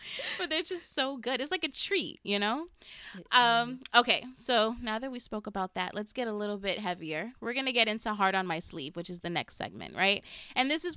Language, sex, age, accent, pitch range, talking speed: English, female, 20-39, American, 180-230 Hz, 240 wpm